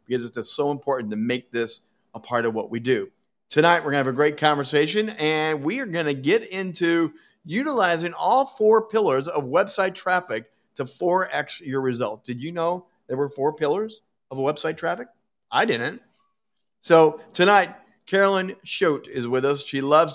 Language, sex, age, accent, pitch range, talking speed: English, male, 50-69, American, 135-195 Hz, 180 wpm